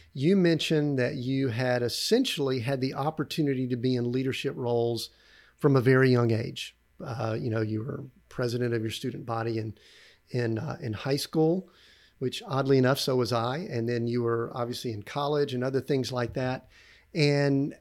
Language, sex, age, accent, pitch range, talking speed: English, male, 50-69, American, 125-160 Hz, 180 wpm